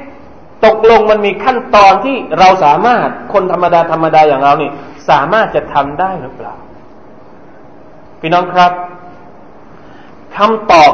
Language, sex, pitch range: Thai, male, 165-260 Hz